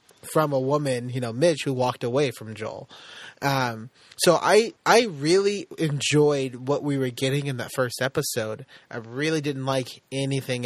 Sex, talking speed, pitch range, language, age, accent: male, 170 wpm, 125-155 Hz, English, 30-49, American